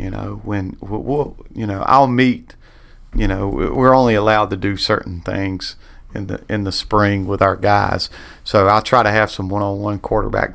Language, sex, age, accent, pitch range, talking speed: English, male, 40-59, American, 100-115 Hz, 195 wpm